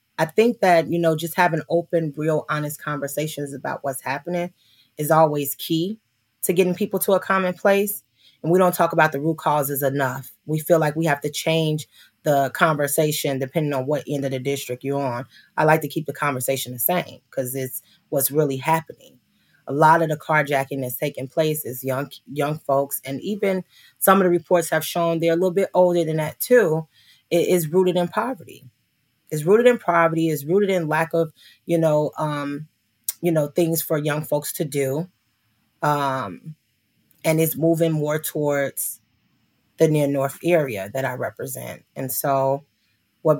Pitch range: 135-165 Hz